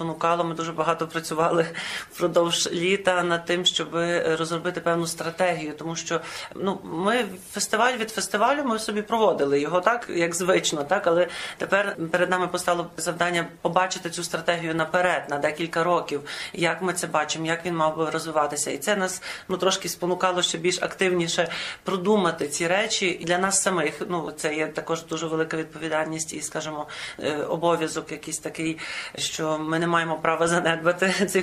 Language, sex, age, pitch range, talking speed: Ukrainian, male, 40-59, 165-185 Hz, 160 wpm